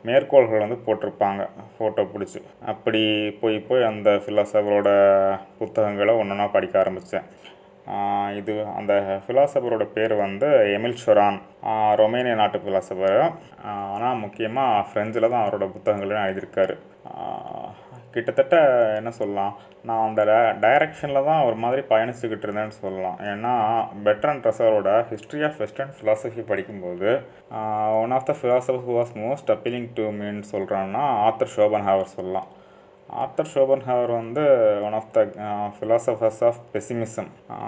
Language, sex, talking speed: Tamil, male, 125 wpm